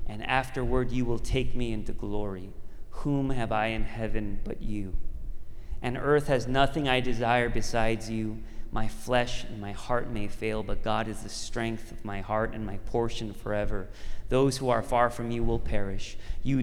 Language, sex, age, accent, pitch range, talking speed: English, male, 30-49, American, 105-135 Hz, 185 wpm